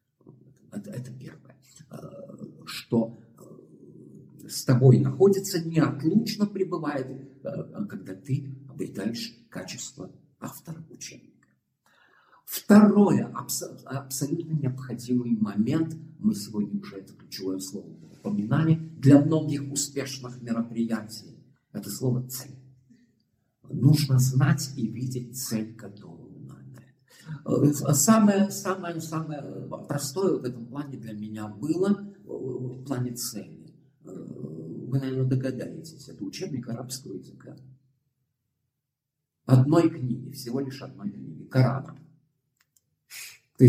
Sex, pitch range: male, 125-160 Hz